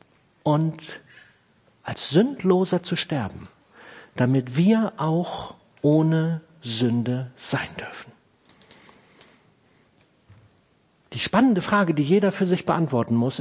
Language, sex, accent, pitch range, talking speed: German, male, German, 145-200 Hz, 95 wpm